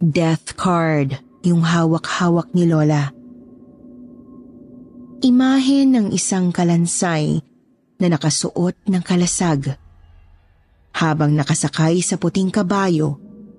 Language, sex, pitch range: Filipino, female, 155-225 Hz